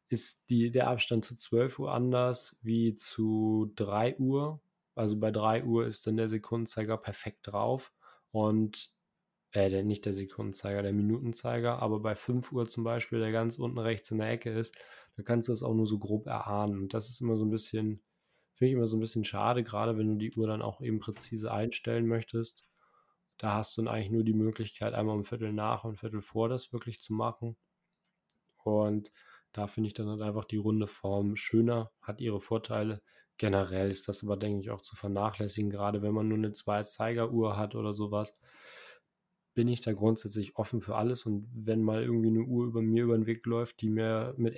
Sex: male